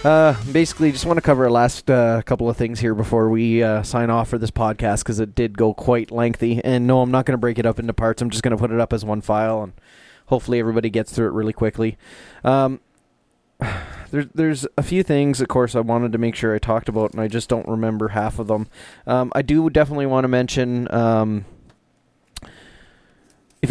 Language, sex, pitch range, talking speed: English, male, 110-125 Hz, 225 wpm